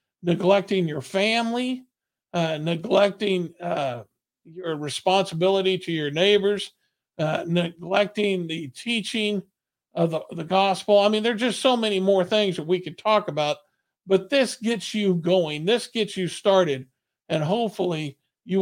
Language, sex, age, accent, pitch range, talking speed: English, male, 50-69, American, 170-210 Hz, 140 wpm